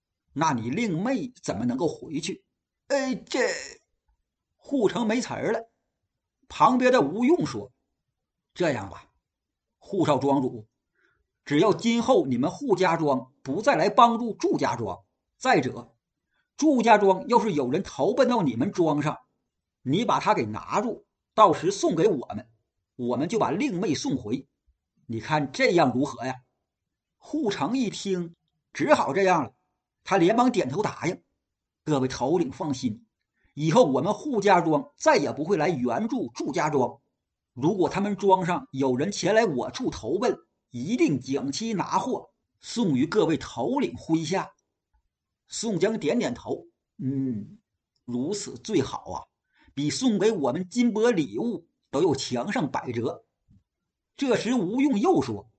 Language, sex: Chinese, male